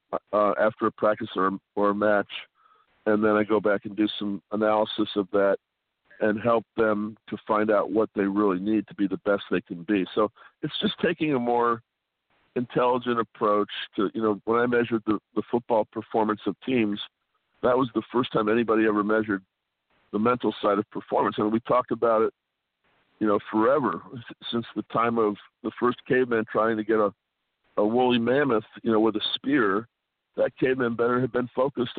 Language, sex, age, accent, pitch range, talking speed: English, male, 50-69, American, 105-115 Hz, 195 wpm